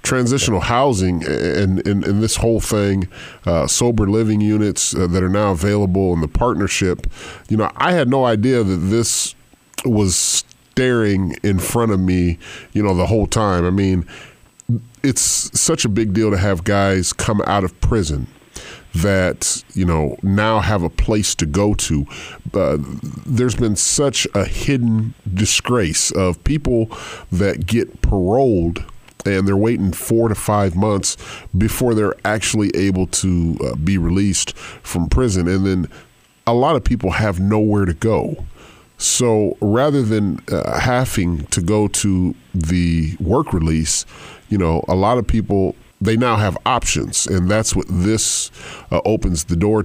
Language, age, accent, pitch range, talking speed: English, 40-59, American, 90-110 Hz, 160 wpm